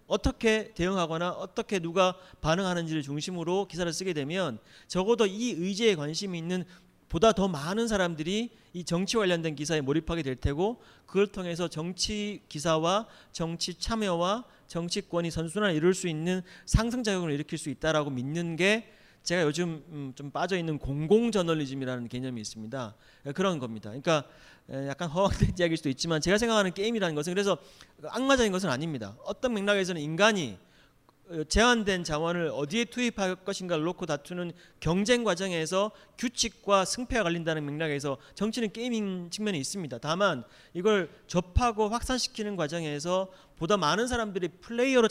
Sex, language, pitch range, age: male, Korean, 150-200 Hz, 40-59